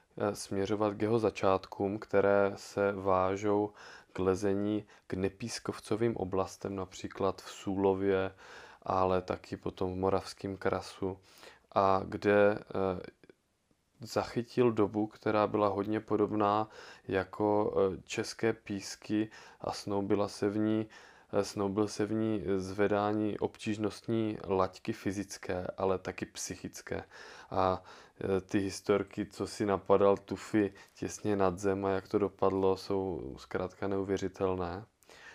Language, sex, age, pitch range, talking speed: Czech, male, 20-39, 95-105 Hz, 105 wpm